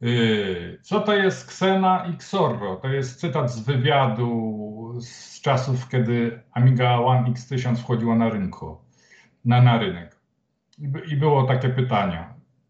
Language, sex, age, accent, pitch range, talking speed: Polish, male, 50-69, native, 120-155 Hz, 130 wpm